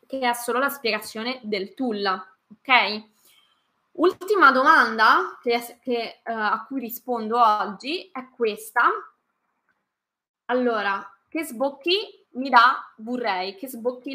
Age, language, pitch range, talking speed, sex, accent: 20-39, Italian, 210-260 Hz, 115 wpm, female, native